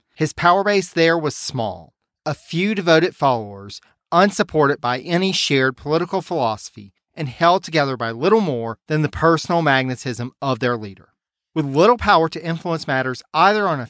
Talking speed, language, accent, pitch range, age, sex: 165 wpm, English, American, 125-180 Hz, 40-59, male